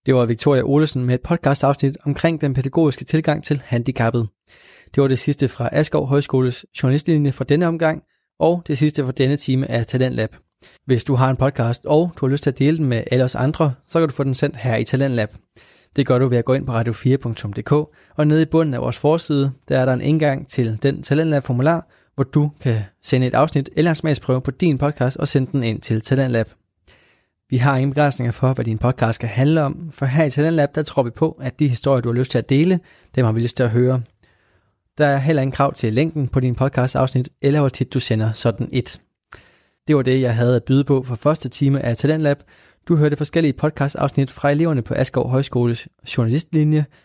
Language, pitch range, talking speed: Danish, 125-150 Hz, 225 wpm